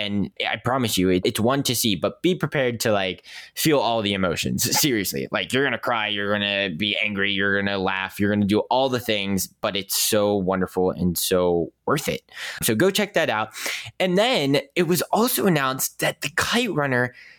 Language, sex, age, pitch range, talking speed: English, male, 20-39, 105-150 Hz, 215 wpm